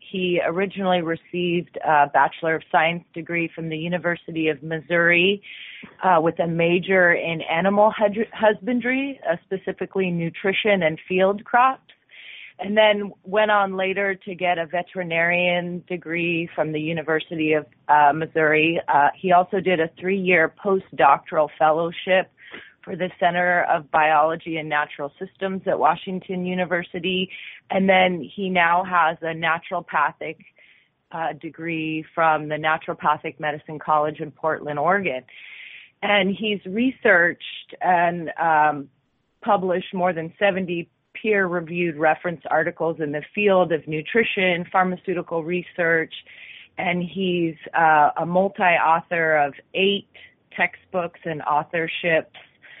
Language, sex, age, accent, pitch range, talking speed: English, female, 30-49, American, 160-190 Hz, 120 wpm